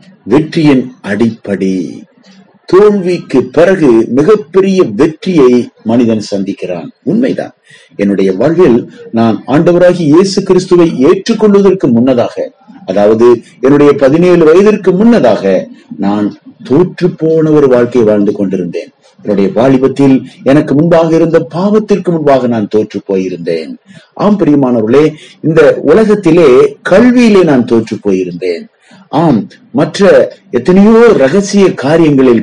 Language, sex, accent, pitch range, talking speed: Tamil, male, native, 125-195 Hz, 90 wpm